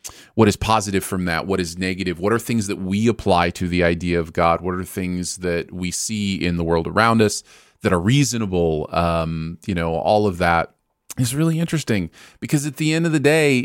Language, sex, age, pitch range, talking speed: English, male, 30-49, 85-115 Hz, 215 wpm